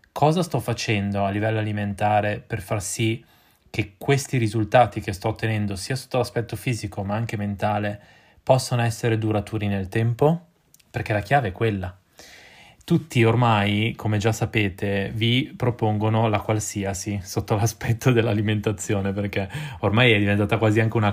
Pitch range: 105-115 Hz